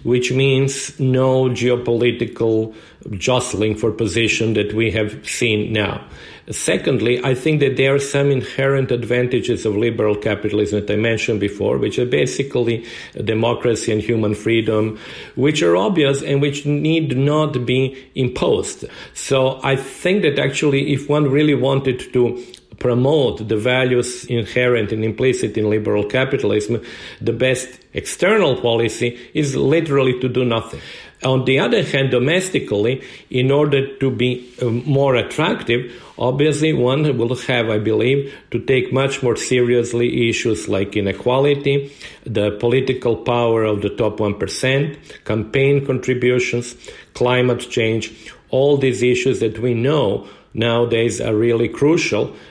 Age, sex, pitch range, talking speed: 50-69, male, 115-135 Hz, 135 wpm